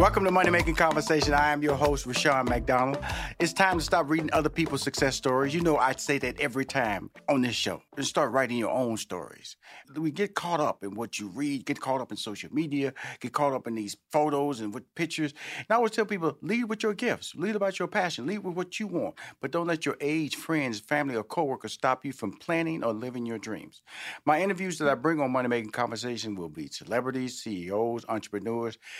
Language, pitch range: English, 120-155 Hz